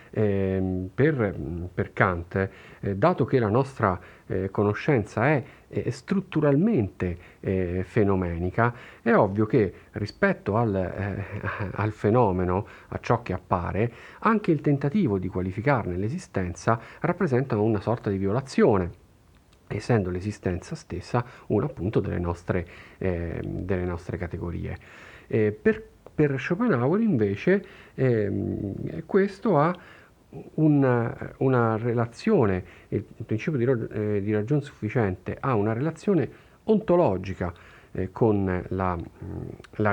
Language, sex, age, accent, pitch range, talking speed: Italian, male, 40-59, native, 95-135 Hz, 105 wpm